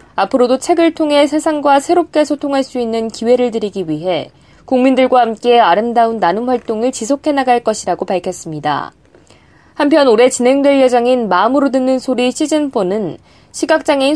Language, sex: Korean, female